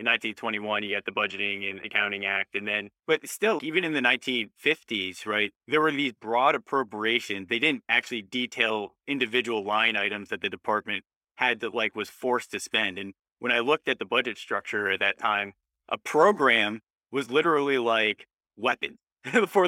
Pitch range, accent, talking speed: 110-130 Hz, American, 175 wpm